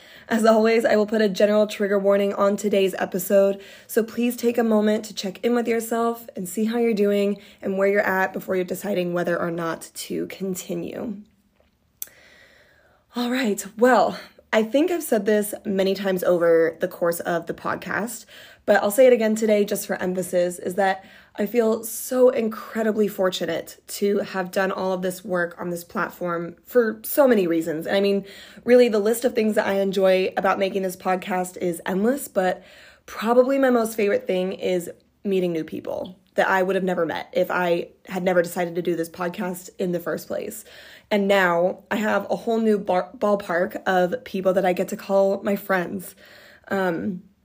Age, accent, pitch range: 20-39, American, 185-220 Hz